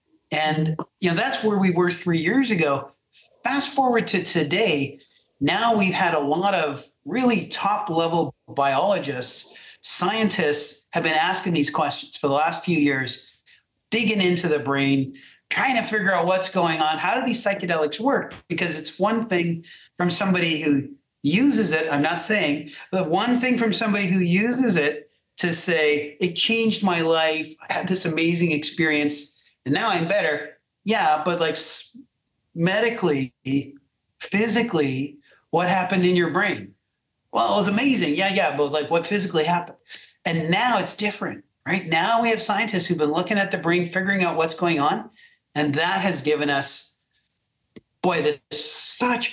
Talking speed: 165 wpm